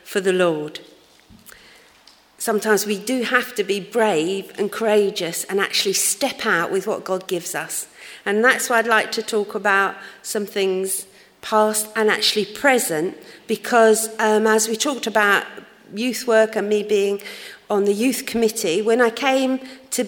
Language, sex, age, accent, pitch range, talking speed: English, female, 50-69, British, 200-230 Hz, 160 wpm